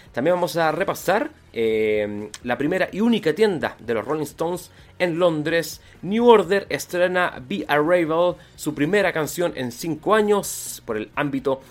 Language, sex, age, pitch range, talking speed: Spanish, male, 30-49, 130-185 Hz, 155 wpm